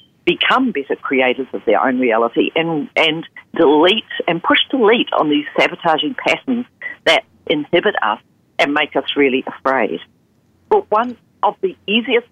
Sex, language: female, English